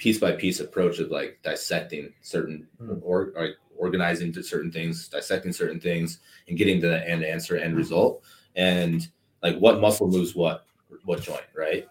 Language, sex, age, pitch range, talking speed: English, male, 20-39, 85-100 Hz, 165 wpm